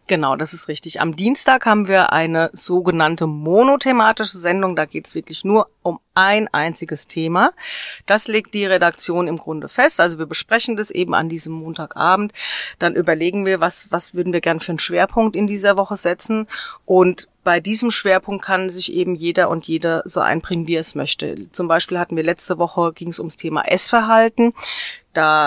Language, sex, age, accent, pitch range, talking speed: German, female, 40-59, German, 170-210 Hz, 185 wpm